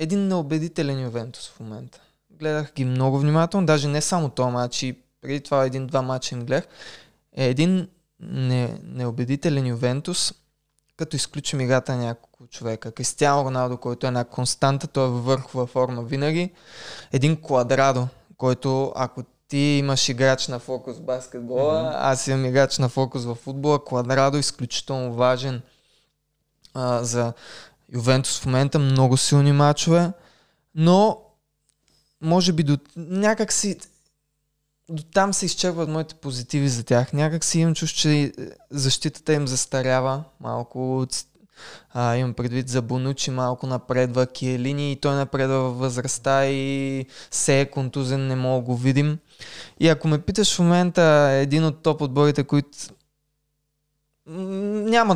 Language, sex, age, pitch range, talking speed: Bulgarian, male, 20-39, 130-155 Hz, 135 wpm